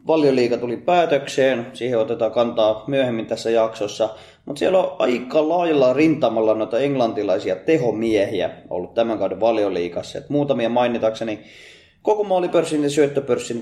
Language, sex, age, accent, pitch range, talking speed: Finnish, male, 20-39, native, 105-135 Hz, 125 wpm